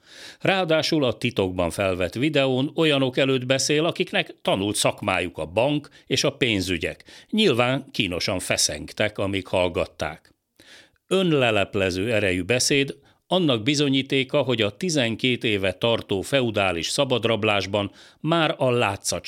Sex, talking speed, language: male, 110 wpm, Hungarian